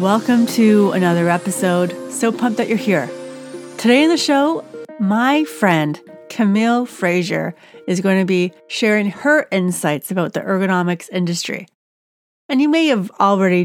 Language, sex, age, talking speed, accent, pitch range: English, female, 30-49, 145 wpm, American, 180-230 Hz